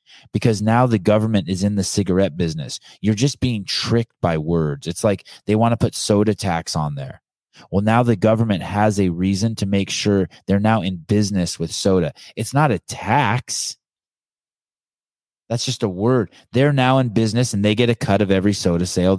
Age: 20-39